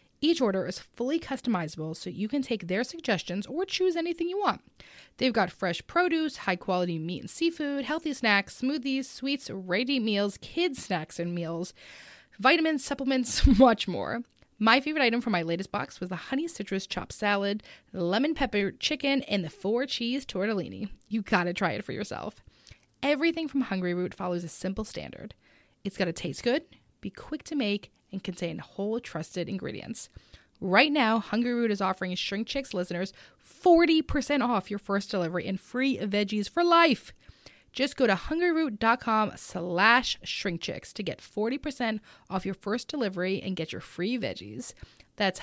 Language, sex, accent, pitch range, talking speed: English, female, American, 190-275 Hz, 165 wpm